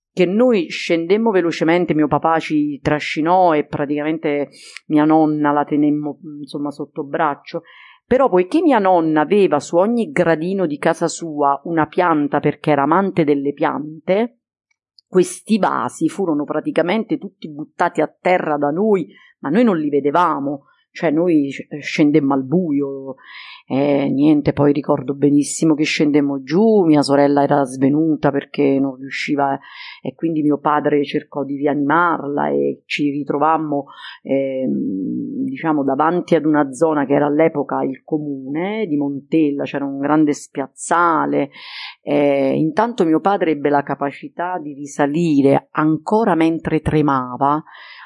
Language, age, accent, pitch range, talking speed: Italian, 40-59, native, 145-170 Hz, 140 wpm